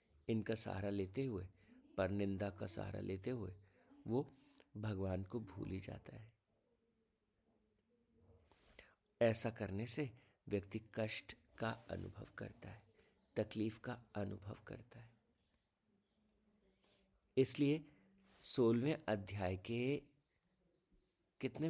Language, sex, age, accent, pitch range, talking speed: Hindi, male, 50-69, native, 100-125 Hz, 95 wpm